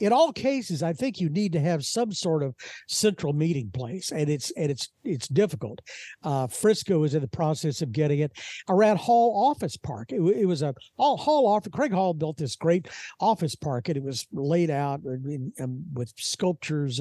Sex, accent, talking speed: male, American, 205 wpm